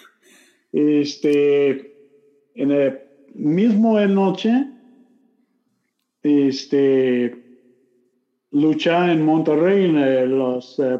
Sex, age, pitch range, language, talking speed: male, 50-69, 145-215 Hz, Spanish, 70 wpm